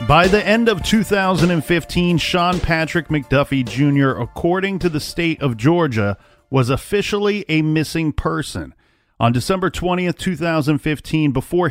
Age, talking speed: 40-59, 130 wpm